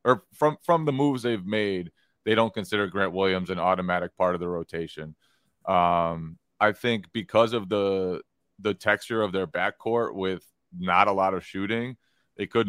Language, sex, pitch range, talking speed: English, male, 95-110 Hz, 175 wpm